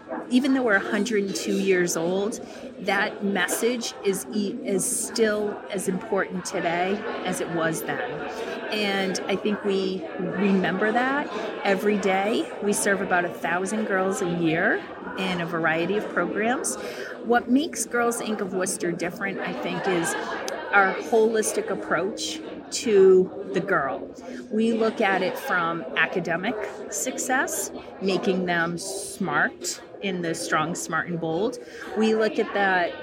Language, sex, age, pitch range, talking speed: English, female, 40-59, 185-220 Hz, 140 wpm